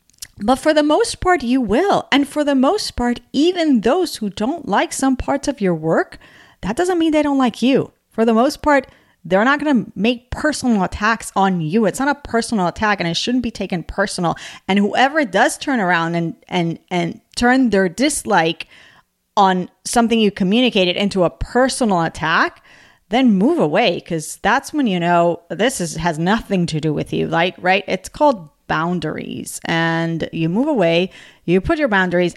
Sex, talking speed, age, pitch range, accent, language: female, 190 wpm, 40-59, 185-275 Hz, American, English